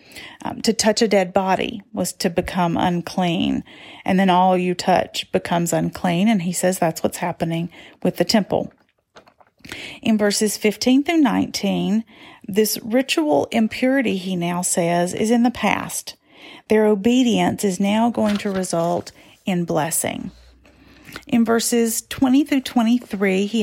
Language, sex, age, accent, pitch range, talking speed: English, female, 40-59, American, 185-235 Hz, 140 wpm